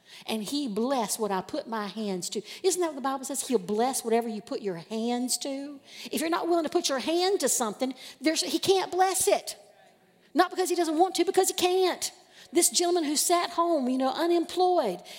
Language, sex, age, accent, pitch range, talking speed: English, female, 50-69, American, 210-300 Hz, 215 wpm